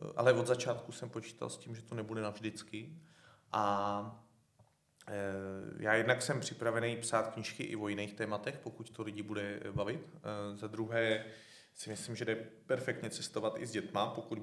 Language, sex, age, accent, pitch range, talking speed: Czech, male, 30-49, native, 105-120 Hz, 160 wpm